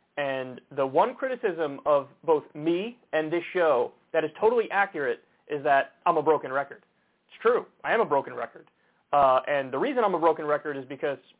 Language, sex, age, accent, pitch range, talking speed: English, male, 30-49, American, 150-225 Hz, 195 wpm